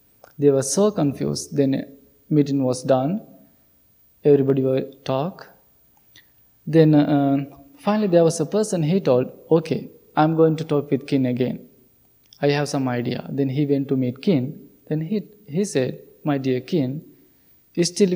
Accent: Indian